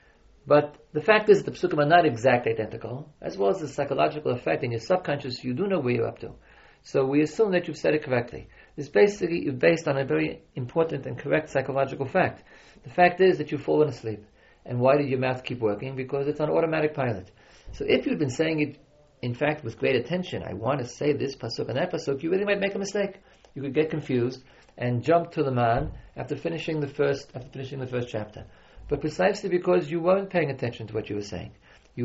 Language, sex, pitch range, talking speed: English, male, 125-170 Hz, 230 wpm